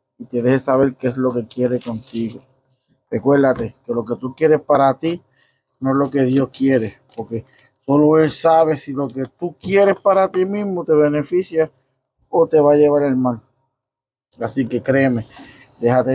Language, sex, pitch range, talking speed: Spanish, male, 130-160 Hz, 180 wpm